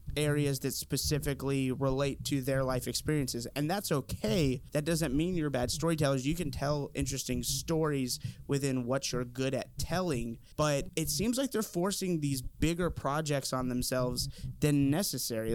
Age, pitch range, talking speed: 20-39, 130-155 Hz, 160 wpm